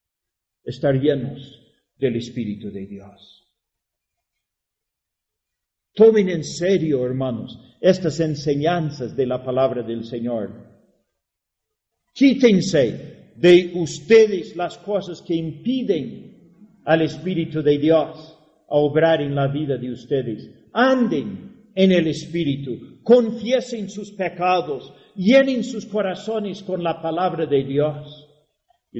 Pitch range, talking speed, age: 140-180 Hz, 105 wpm, 50-69